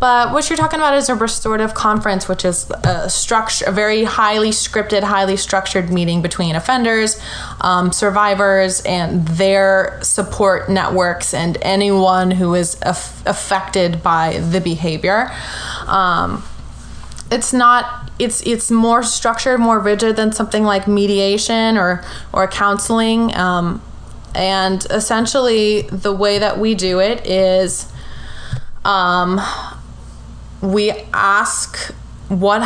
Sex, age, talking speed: female, 20-39, 125 wpm